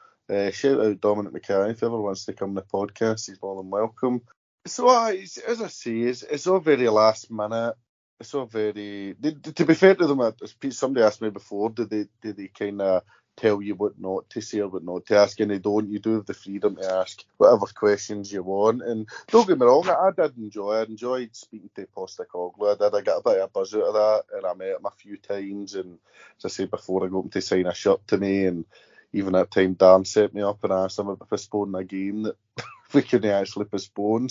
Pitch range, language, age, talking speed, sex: 95-120 Hz, English, 20-39, 240 wpm, male